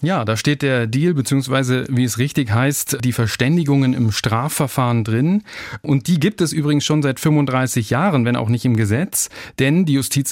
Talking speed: 185 wpm